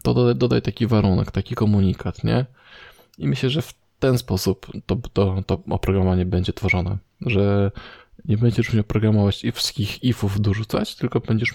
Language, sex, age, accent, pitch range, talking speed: Polish, male, 20-39, native, 95-120 Hz, 155 wpm